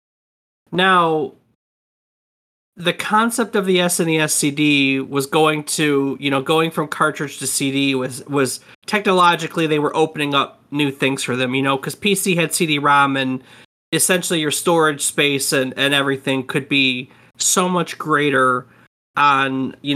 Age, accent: 30-49, American